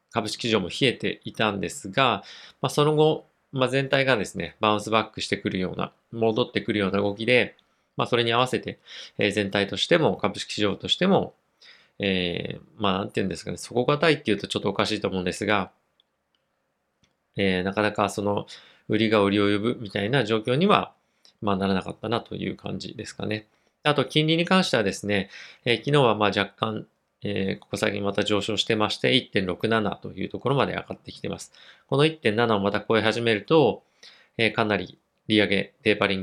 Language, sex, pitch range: Japanese, male, 100-120 Hz